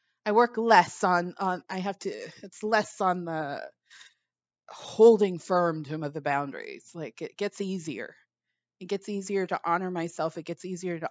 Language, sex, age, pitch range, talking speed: English, female, 30-49, 170-225 Hz, 180 wpm